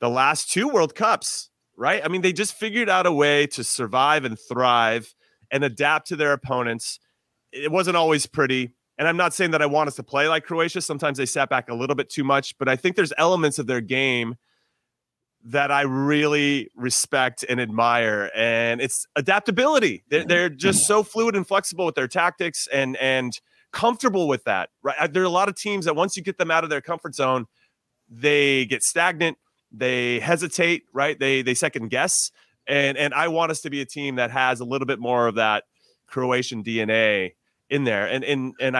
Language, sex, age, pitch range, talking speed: English, male, 30-49, 125-165 Hz, 205 wpm